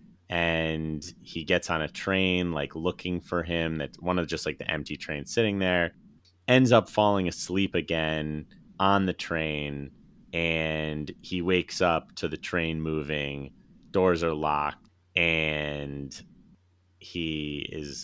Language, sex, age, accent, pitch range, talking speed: English, male, 30-49, American, 75-90 Hz, 140 wpm